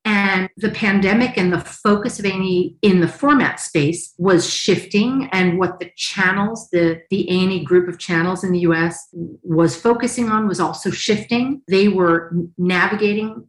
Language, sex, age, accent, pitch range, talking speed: English, female, 40-59, American, 165-215 Hz, 160 wpm